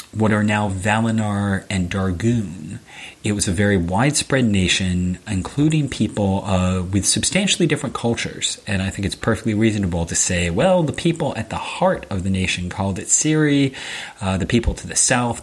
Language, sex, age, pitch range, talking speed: English, male, 30-49, 95-115 Hz, 175 wpm